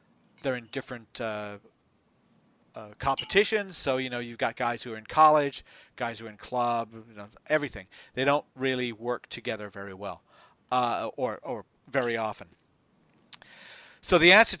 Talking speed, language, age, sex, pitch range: 150 wpm, English, 40-59, male, 120-150 Hz